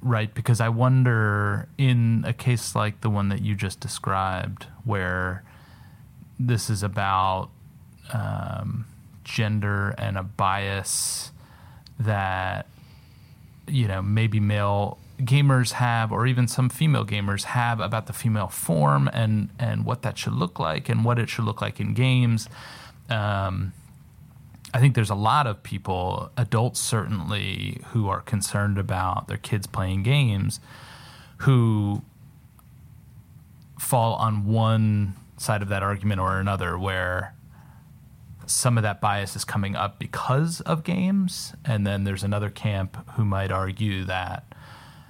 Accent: American